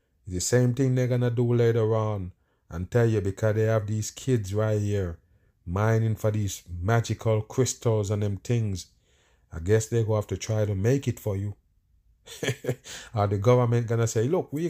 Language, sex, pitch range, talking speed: English, male, 105-125 Hz, 195 wpm